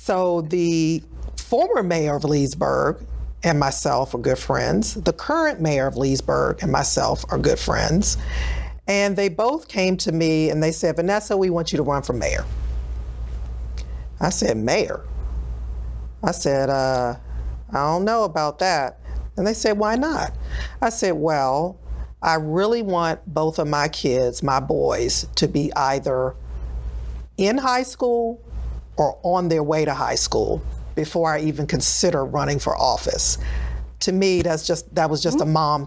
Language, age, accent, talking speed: English, 40-59, American, 160 wpm